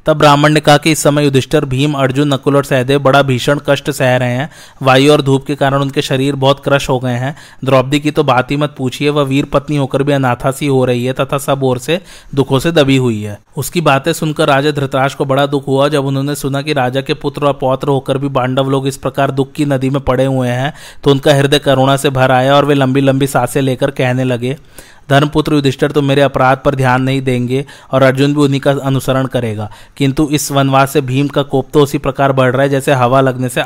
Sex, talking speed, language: male, 235 wpm, Hindi